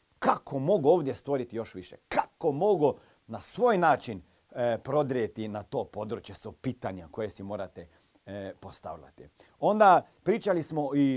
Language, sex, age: Croatian, male, 40-59